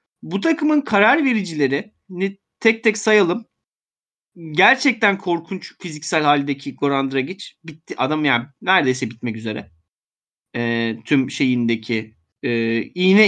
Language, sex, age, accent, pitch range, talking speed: Turkish, male, 30-49, native, 140-205 Hz, 110 wpm